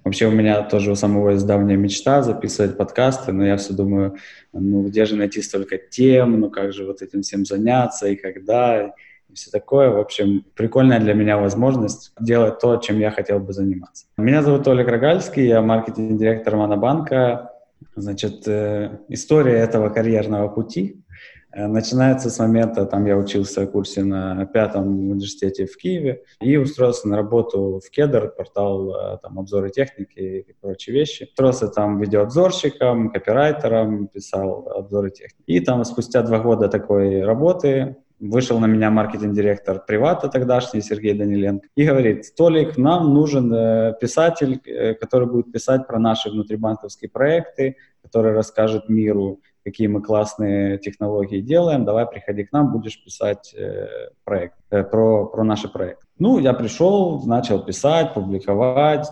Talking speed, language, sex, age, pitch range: 145 wpm, Russian, male, 20-39, 100-125 Hz